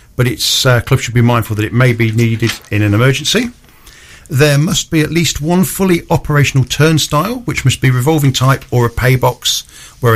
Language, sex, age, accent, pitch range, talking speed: English, male, 50-69, British, 115-135 Hz, 200 wpm